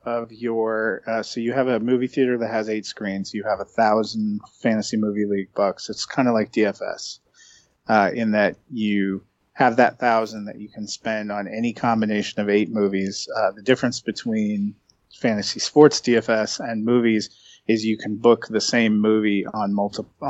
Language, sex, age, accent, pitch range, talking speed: English, male, 30-49, American, 105-120 Hz, 180 wpm